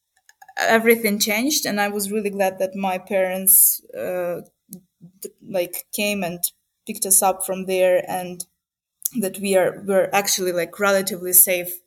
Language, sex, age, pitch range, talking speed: English, female, 20-39, 190-235 Hz, 145 wpm